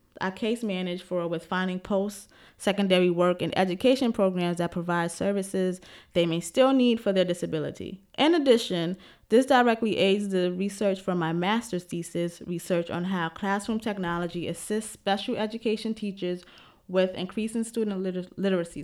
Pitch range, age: 180-220 Hz, 20-39